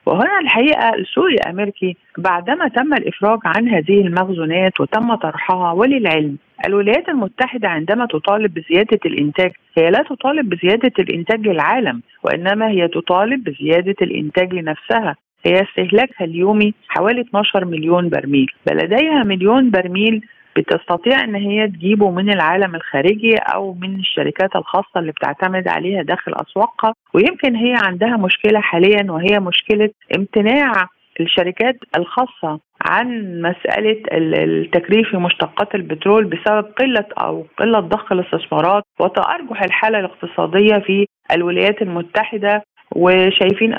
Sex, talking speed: female, 120 wpm